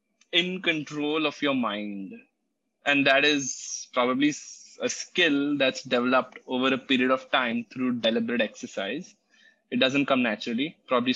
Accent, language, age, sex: Indian, English, 20-39, male